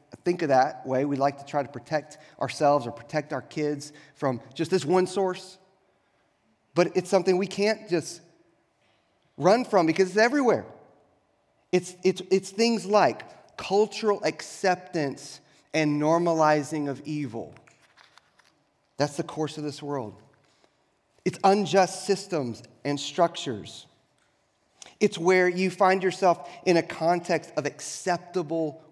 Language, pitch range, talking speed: English, 140-185 Hz, 130 wpm